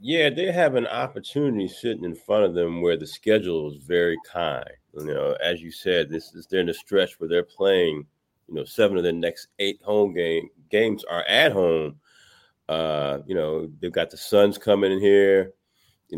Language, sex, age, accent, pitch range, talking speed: English, male, 30-49, American, 85-120 Hz, 200 wpm